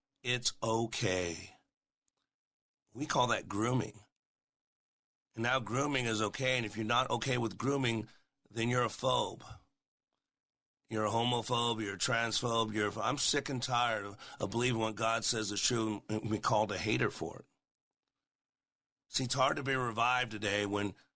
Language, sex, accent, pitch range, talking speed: English, male, American, 115-135 Hz, 165 wpm